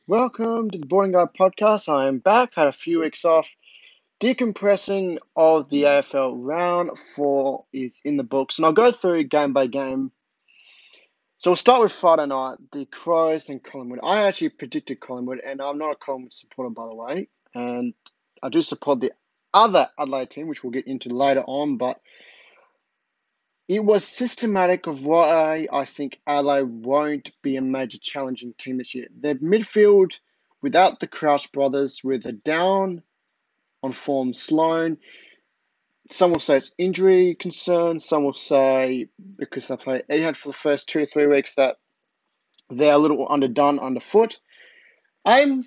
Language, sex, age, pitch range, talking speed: English, male, 20-39, 135-185 Hz, 160 wpm